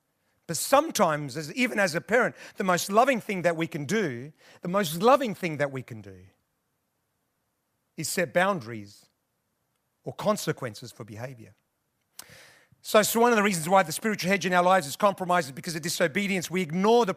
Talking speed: 180 wpm